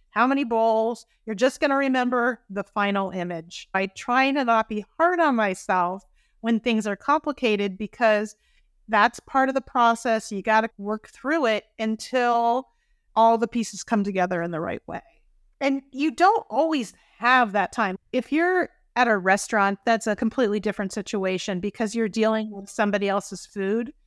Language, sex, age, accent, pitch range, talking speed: English, female, 40-59, American, 200-240 Hz, 170 wpm